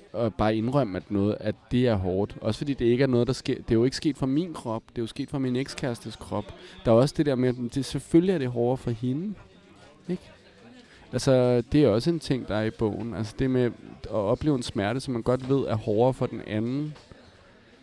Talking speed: 250 wpm